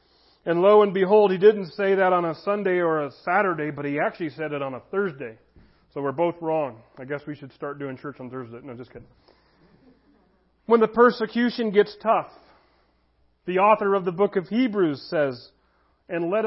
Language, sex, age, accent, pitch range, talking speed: English, male, 40-59, American, 155-205 Hz, 195 wpm